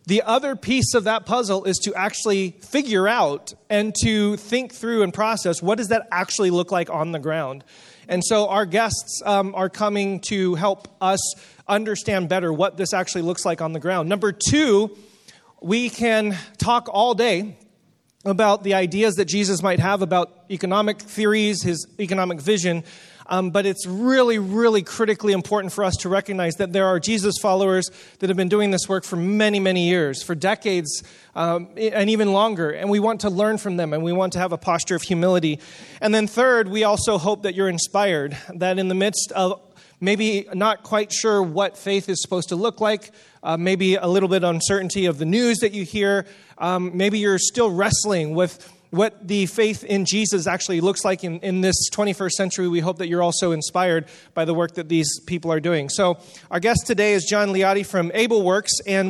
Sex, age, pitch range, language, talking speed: male, 30-49, 180-210 Hz, English, 200 wpm